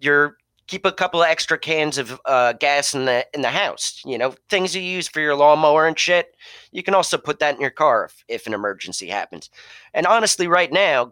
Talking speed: 225 wpm